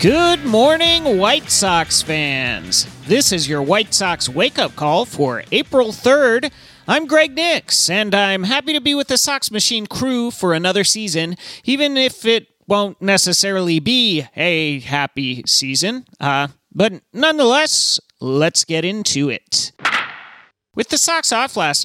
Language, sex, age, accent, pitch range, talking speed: English, male, 30-49, American, 165-245 Hz, 145 wpm